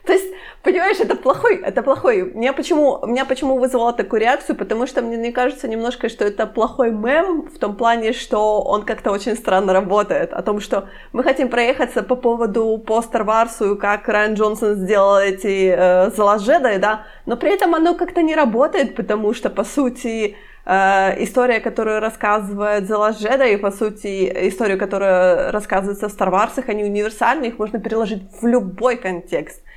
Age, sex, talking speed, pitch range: 20-39, female, 165 wpm, 210-255 Hz